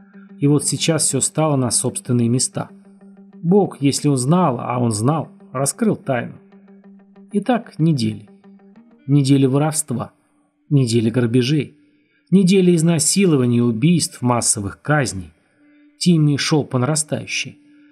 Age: 30-49